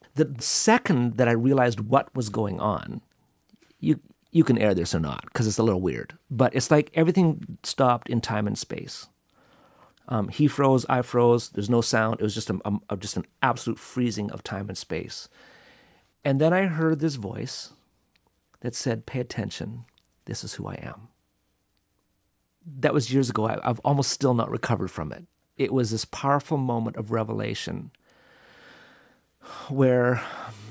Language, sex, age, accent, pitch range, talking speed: English, male, 40-59, American, 105-130 Hz, 170 wpm